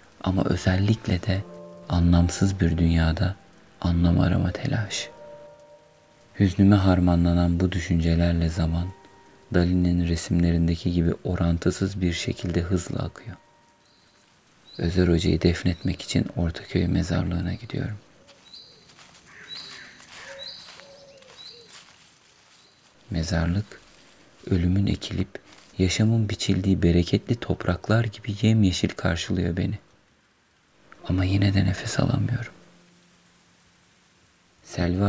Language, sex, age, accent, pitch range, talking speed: Turkish, male, 40-59, native, 85-95 Hz, 80 wpm